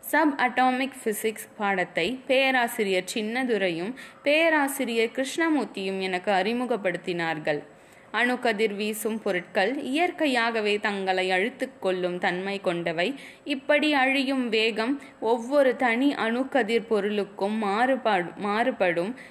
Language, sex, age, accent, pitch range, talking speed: Tamil, female, 20-39, native, 195-260 Hz, 85 wpm